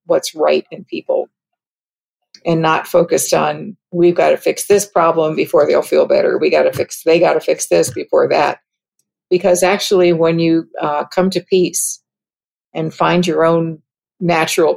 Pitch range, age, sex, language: 165-205 Hz, 50-69, female, English